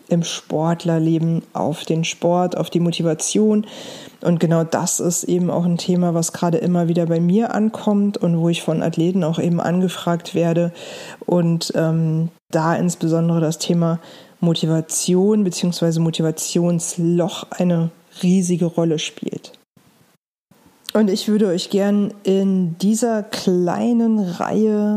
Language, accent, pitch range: German, German, 165-200 Hz